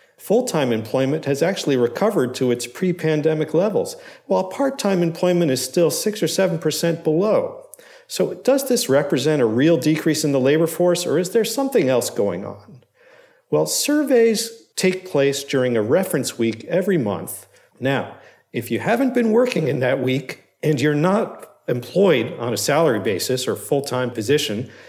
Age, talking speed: 50-69, 170 wpm